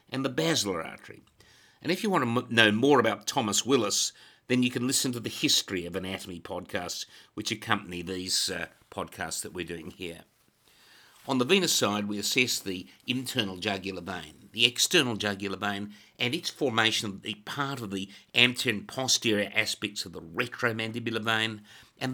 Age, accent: 50-69, Australian